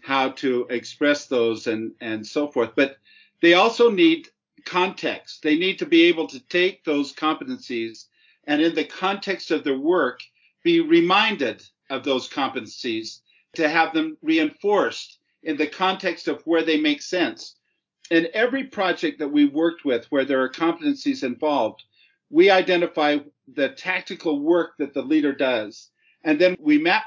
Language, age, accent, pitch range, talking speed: English, 50-69, American, 145-190 Hz, 155 wpm